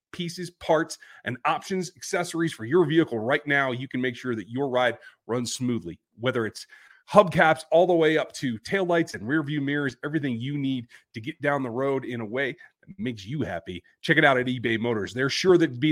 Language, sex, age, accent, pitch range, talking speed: English, male, 30-49, American, 125-160 Hz, 210 wpm